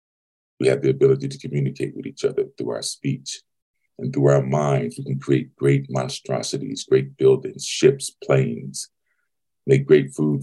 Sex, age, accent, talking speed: male, 40-59, American, 160 wpm